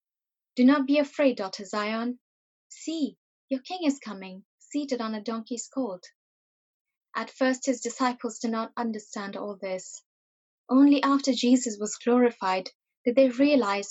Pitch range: 205-265 Hz